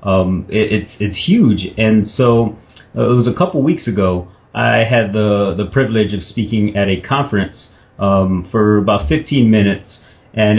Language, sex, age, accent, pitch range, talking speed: English, male, 30-49, American, 100-115 Hz, 170 wpm